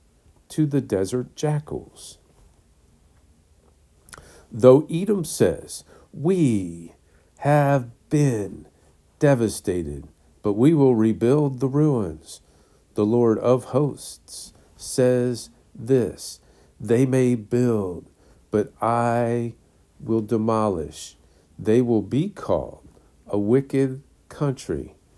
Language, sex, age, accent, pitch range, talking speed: English, male, 50-69, American, 80-130 Hz, 90 wpm